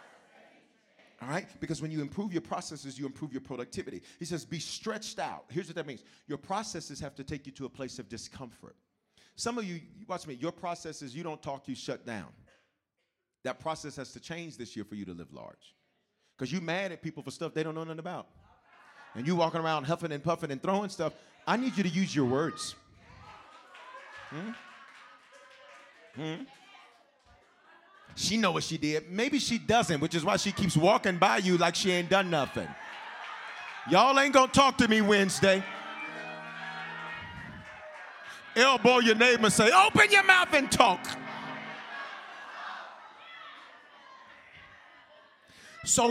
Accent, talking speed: American, 170 wpm